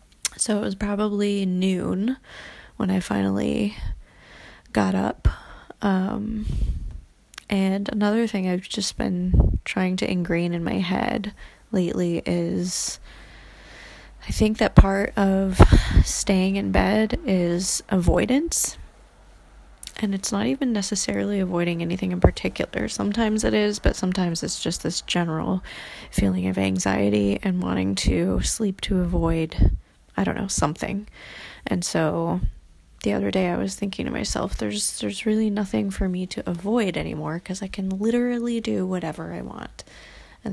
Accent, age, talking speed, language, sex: American, 20-39, 140 wpm, English, female